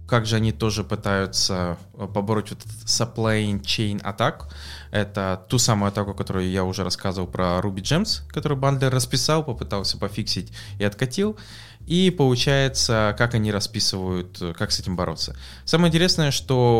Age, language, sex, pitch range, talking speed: 20-39, English, male, 95-120 Hz, 145 wpm